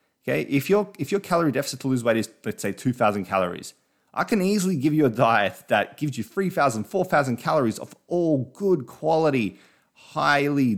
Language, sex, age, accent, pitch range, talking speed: English, male, 30-49, Australian, 100-135 Hz, 185 wpm